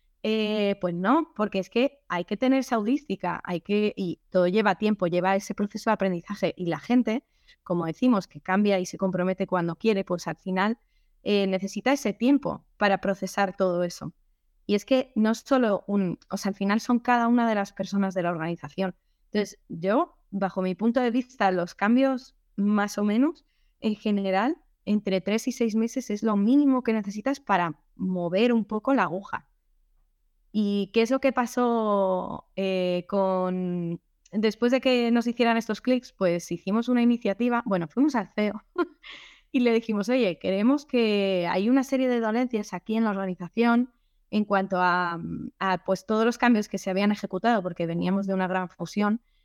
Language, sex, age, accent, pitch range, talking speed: Spanish, female, 20-39, Spanish, 185-235 Hz, 185 wpm